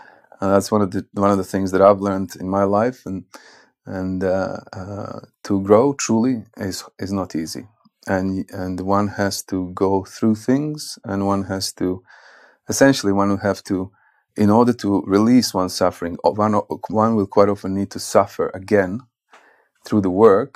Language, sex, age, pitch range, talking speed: English, male, 30-49, 95-110 Hz, 180 wpm